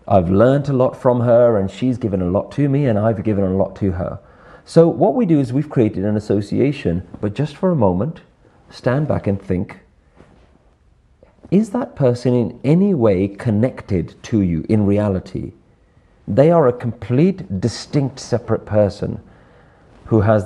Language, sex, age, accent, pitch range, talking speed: English, male, 40-59, British, 105-145 Hz, 170 wpm